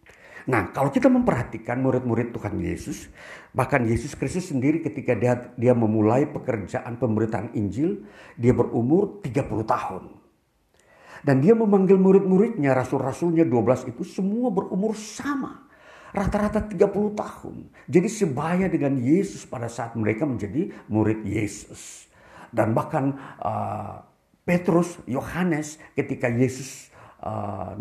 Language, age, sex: Indonesian, 50-69, male